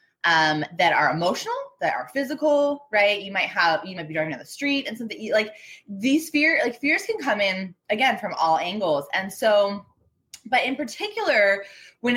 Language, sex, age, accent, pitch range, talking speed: English, female, 20-39, American, 180-275 Hz, 185 wpm